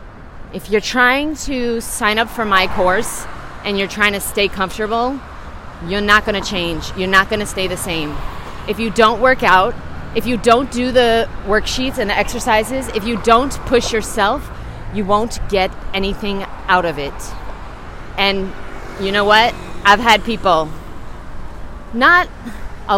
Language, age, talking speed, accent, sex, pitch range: English, 30-49, 160 wpm, American, female, 185-235 Hz